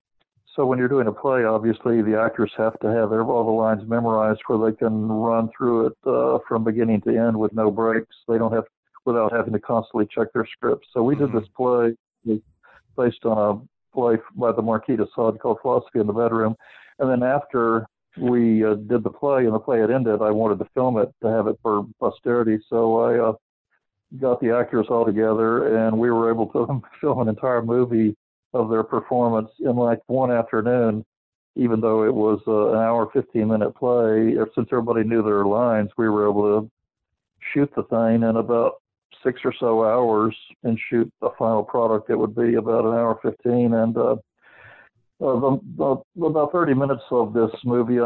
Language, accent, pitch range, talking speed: English, American, 110-120 Hz, 190 wpm